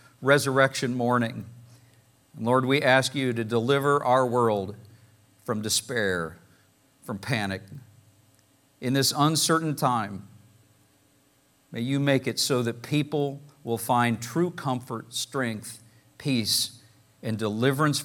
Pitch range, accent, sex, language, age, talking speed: 110-140 Hz, American, male, English, 50-69, 110 wpm